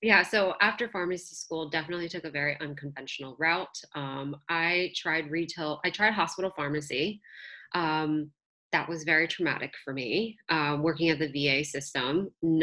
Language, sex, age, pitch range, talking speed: English, female, 20-39, 150-185 Hz, 150 wpm